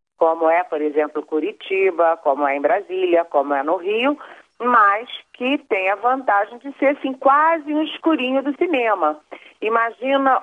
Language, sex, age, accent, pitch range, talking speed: Portuguese, female, 40-59, Brazilian, 175-230 Hz, 155 wpm